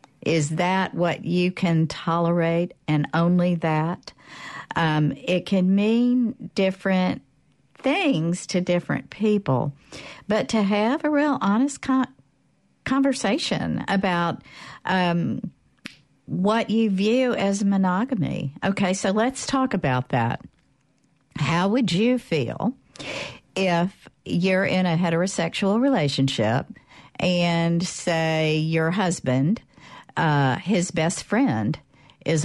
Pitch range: 150-195 Hz